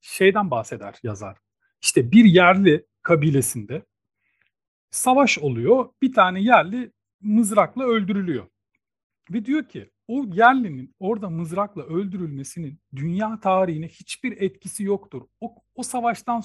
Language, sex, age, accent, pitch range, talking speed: Turkish, male, 40-59, native, 145-210 Hz, 110 wpm